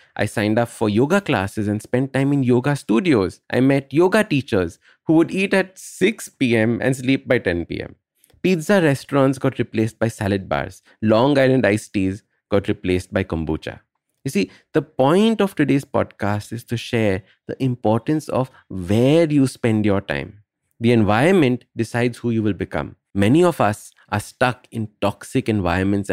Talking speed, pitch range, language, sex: 170 wpm, 100-140 Hz, English, male